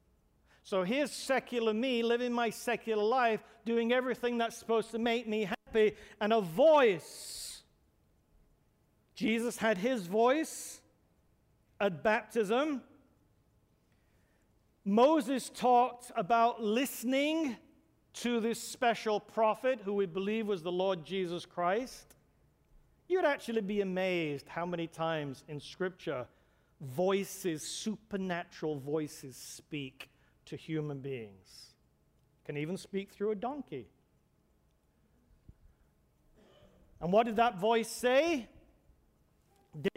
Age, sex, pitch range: 50-69, male, 175-240 Hz